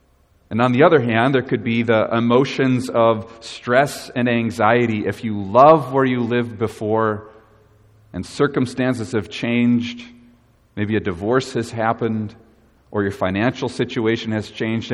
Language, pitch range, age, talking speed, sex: English, 100-125 Hz, 40-59, 145 wpm, male